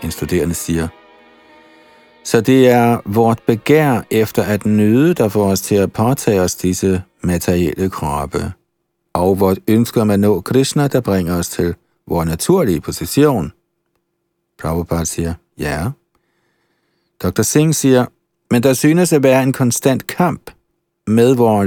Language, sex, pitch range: Danish, male, 90-130 Hz